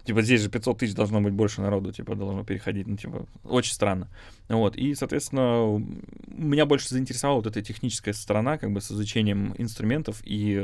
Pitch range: 100-120 Hz